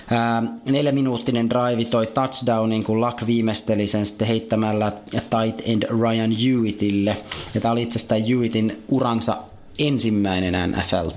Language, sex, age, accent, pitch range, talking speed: Finnish, male, 30-49, native, 105-125 Hz, 130 wpm